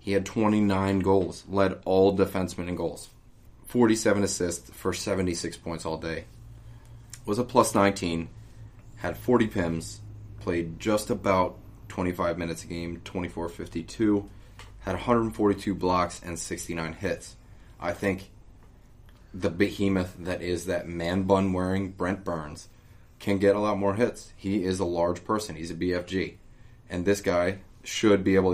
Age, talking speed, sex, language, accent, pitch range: 20-39, 145 wpm, male, English, American, 90-105 Hz